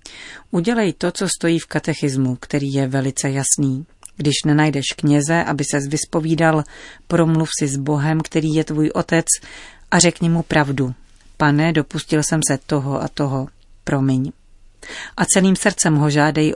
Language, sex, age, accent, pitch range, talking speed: Czech, female, 40-59, native, 140-165 Hz, 150 wpm